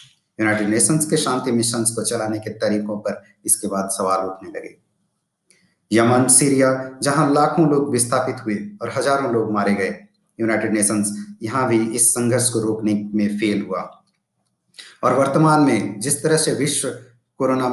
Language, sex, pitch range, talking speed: Hindi, male, 105-130 Hz, 155 wpm